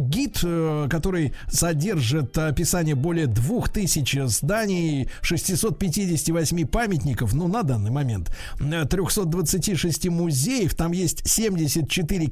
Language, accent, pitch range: Russian, native, 140-180 Hz